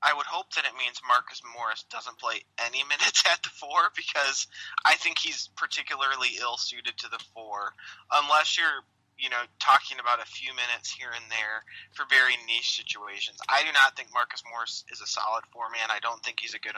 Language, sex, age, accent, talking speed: English, male, 30-49, American, 205 wpm